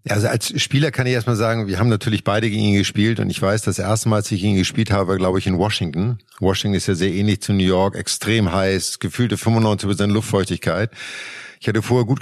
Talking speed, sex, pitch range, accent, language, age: 230 wpm, male, 110-135 Hz, German, German, 50-69